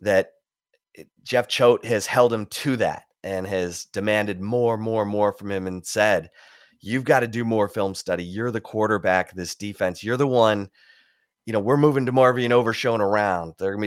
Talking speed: 200 wpm